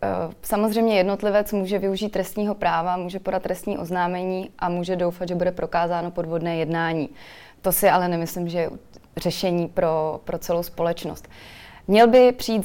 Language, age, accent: Czech, 20-39, native